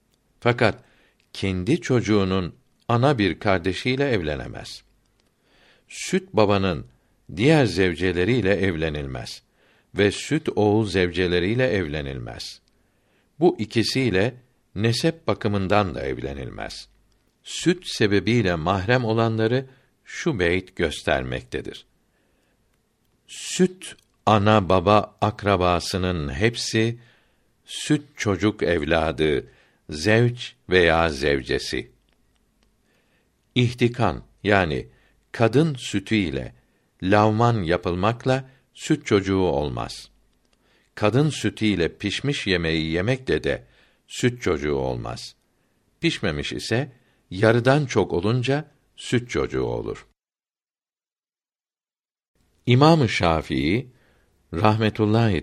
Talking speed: 75 wpm